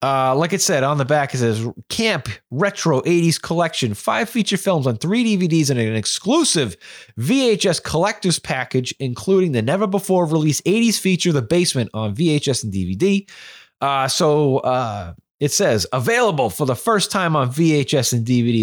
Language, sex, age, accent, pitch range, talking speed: English, male, 30-49, American, 135-205 Hz, 170 wpm